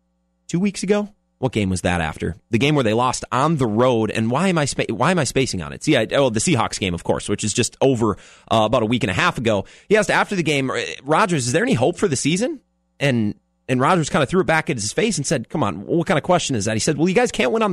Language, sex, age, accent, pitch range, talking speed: English, male, 30-49, American, 110-185 Hz, 300 wpm